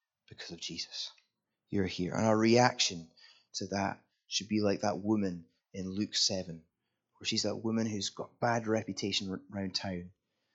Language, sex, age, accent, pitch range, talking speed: English, male, 20-39, British, 95-110 Hz, 160 wpm